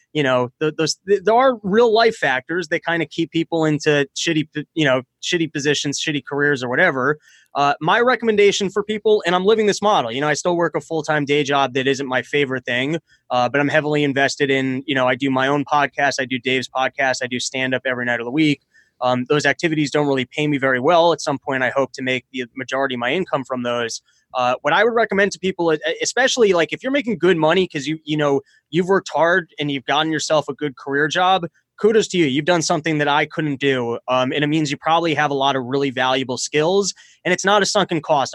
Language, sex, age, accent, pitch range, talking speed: English, male, 20-39, American, 135-170 Hz, 245 wpm